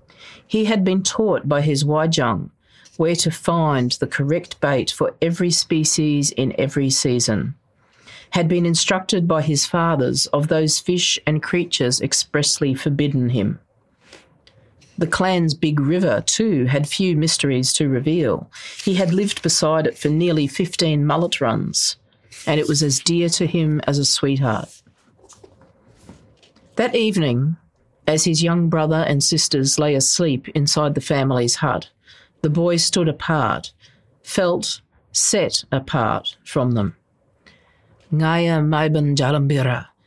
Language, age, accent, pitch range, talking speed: English, 40-59, Australian, 135-165 Hz, 135 wpm